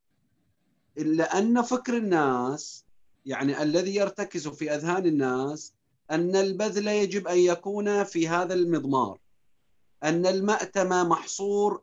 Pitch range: 155-195 Hz